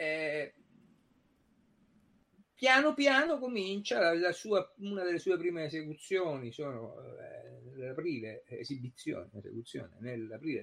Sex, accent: male, native